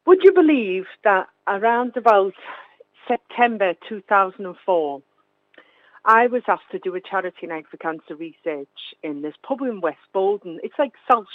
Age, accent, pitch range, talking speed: 50-69, British, 170-230 Hz, 150 wpm